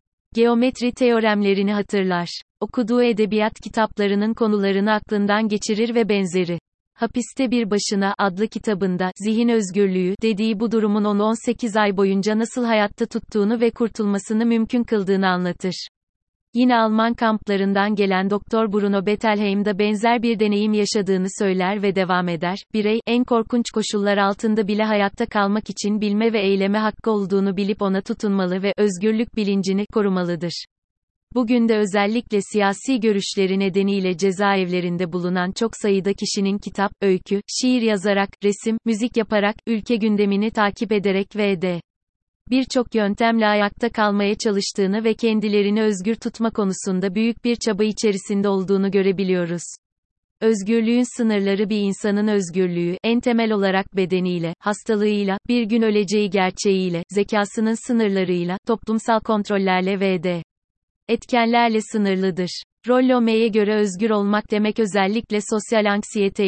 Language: Turkish